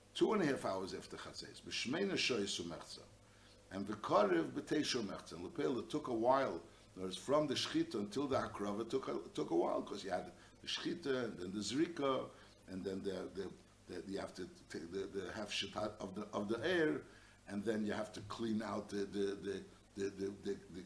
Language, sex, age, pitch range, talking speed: English, male, 60-79, 100-145 Hz, 190 wpm